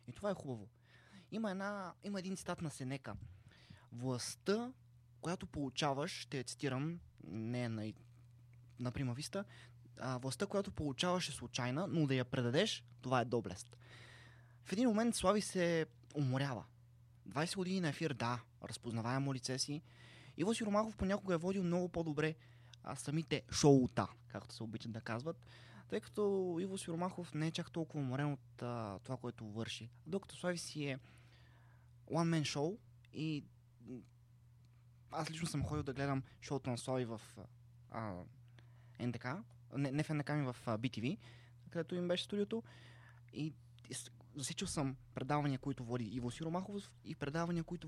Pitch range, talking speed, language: 120-160 Hz, 150 wpm, Bulgarian